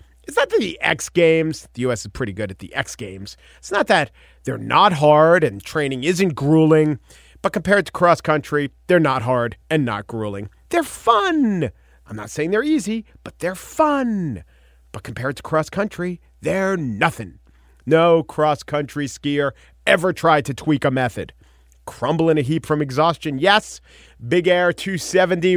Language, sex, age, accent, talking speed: English, male, 40-59, American, 160 wpm